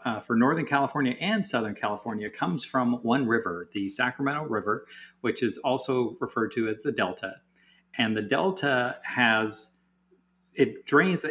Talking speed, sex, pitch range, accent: 150 wpm, male, 115-170 Hz, American